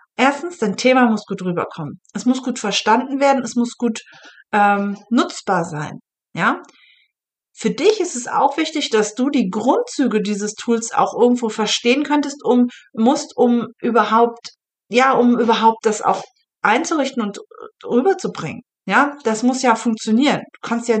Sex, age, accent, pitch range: female, 40-59, German, 215-275 Hz